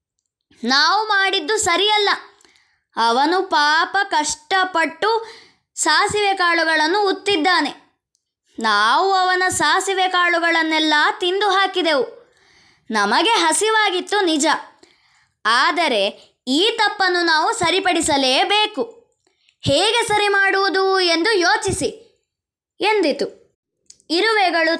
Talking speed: 75 wpm